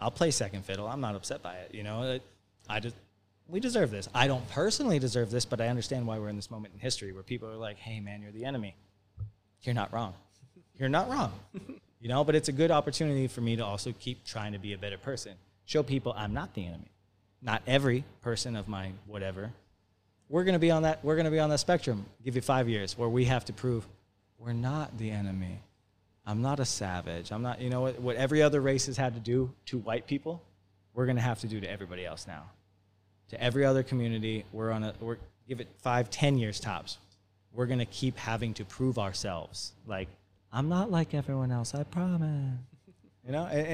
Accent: American